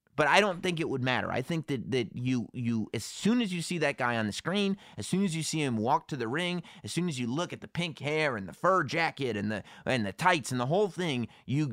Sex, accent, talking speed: male, American, 285 wpm